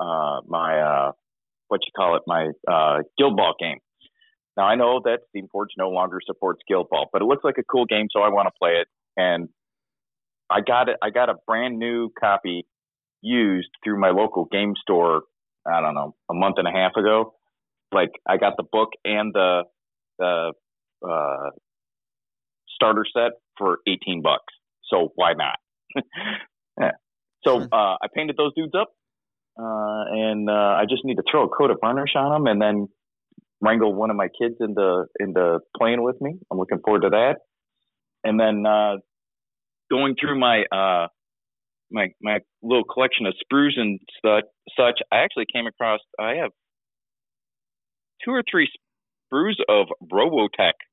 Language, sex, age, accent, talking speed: English, male, 30-49, American, 175 wpm